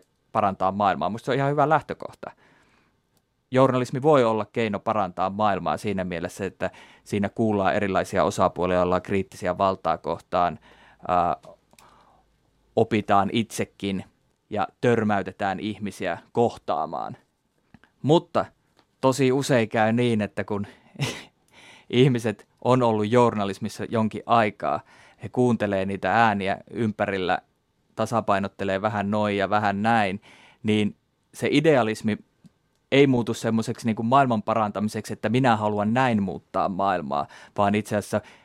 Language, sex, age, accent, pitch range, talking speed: Finnish, male, 20-39, native, 100-115 Hz, 115 wpm